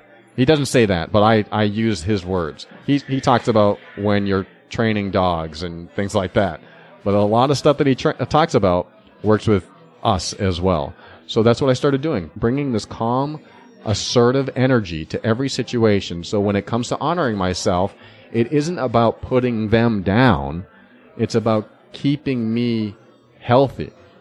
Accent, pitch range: American, 95-125 Hz